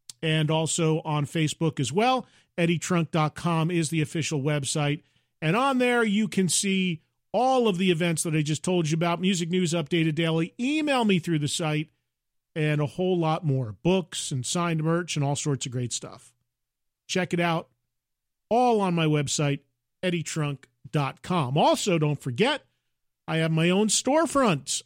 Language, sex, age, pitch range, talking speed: English, male, 40-59, 150-195 Hz, 160 wpm